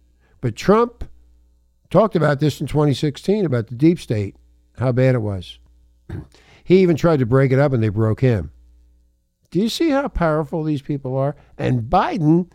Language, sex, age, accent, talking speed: English, male, 60-79, American, 170 wpm